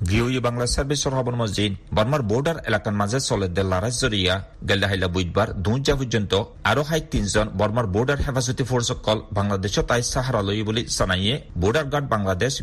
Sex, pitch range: male, 100-130 Hz